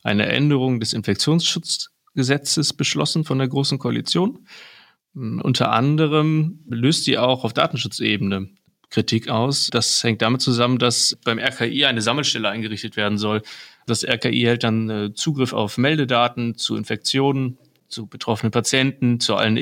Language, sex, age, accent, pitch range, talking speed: German, male, 30-49, German, 110-130 Hz, 135 wpm